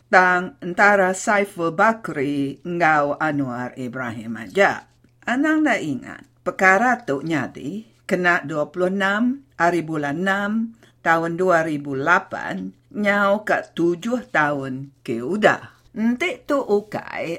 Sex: female